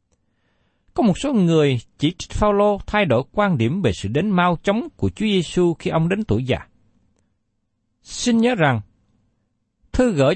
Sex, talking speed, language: male, 170 wpm, Vietnamese